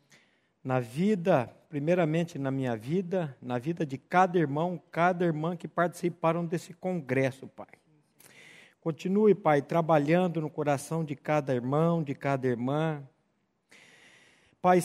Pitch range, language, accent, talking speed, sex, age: 150-180 Hz, Portuguese, Brazilian, 120 wpm, male, 50-69